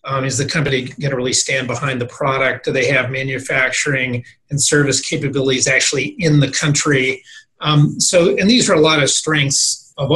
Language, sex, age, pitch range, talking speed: English, male, 30-49, 135-165 Hz, 190 wpm